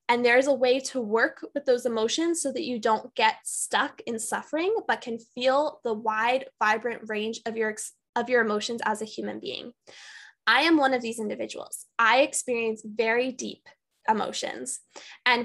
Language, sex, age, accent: English, female, 10-29, American